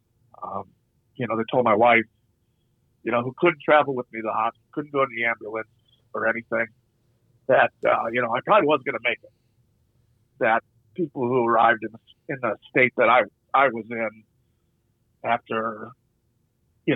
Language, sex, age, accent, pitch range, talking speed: English, male, 50-69, American, 115-130 Hz, 180 wpm